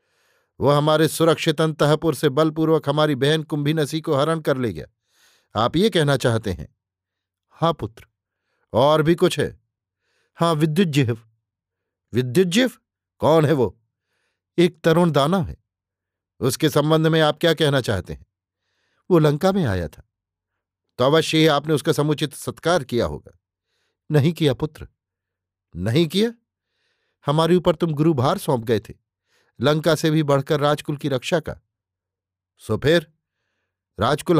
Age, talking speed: 50-69, 140 wpm